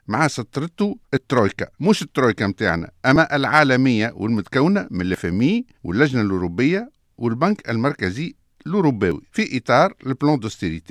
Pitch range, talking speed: 115-185 Hz, 100 wpm